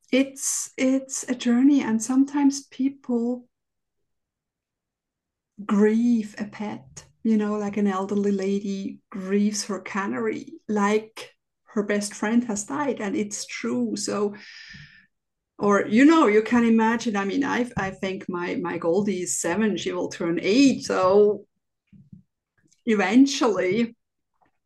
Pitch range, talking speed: 200-245 Hz, 125 wpm